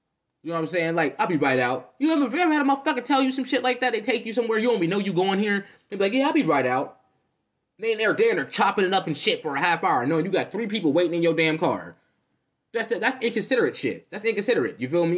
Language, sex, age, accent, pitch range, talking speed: English, male, 20-39, American, 160-270 Hz, 320 wpm